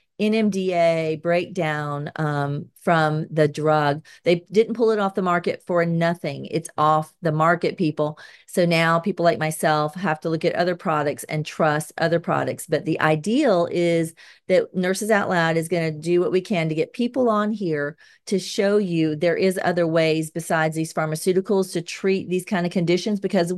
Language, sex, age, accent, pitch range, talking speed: English, female, 40-59, American, 155-185 Hz, 185 wpm